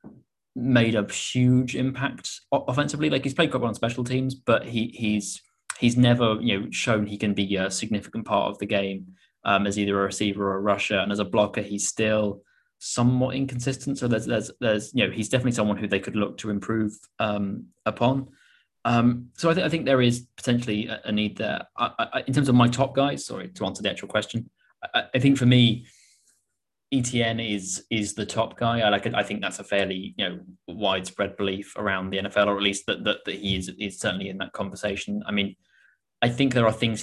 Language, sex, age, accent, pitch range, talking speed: English, male, 20-39, British, 100-125 Hz, 215 wpm